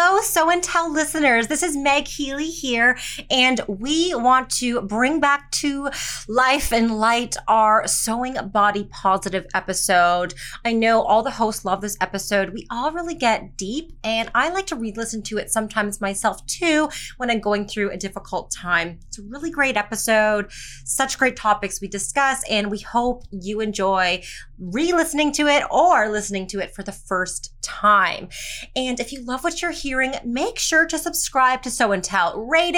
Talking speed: 180 wpm